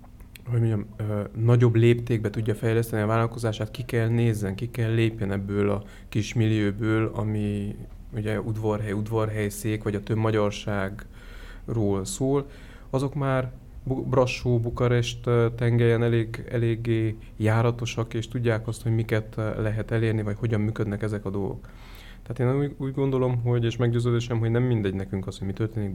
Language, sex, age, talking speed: Hungarian, male, 30-49, 145 wpm